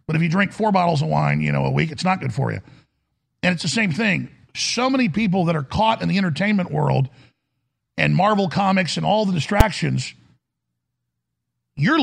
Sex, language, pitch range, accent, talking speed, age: male, English, 145-215 Hz, American, 200 wpm, 50-69